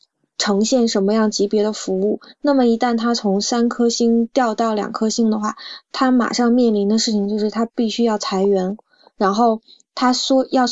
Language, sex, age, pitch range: Chinese, female, 20-39, 210-245 Hz